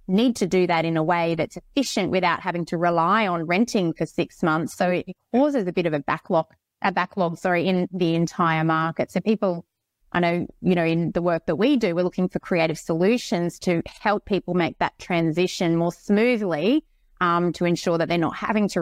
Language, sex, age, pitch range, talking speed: English, female, 20-39, 165-195 Hz, 210 wpm